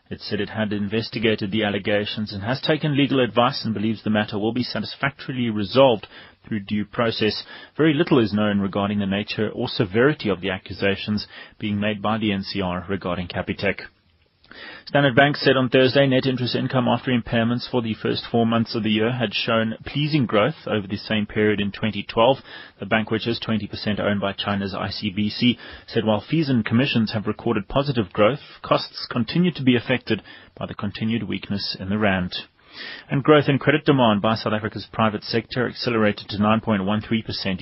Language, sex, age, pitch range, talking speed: English, male, 30-49, 100-120 Hz, 180 wpm